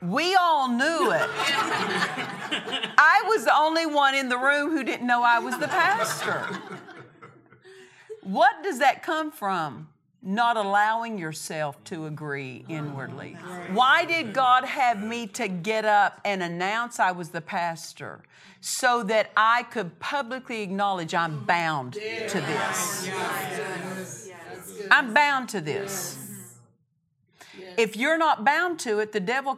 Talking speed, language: 135 wpm, English